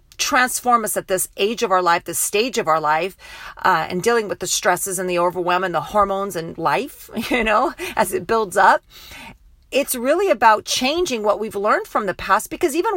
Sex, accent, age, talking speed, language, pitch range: female, American, 40-59, 210 wpm, English, 185-270 Hz